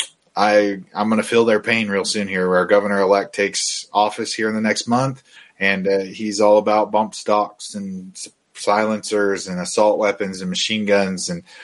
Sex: male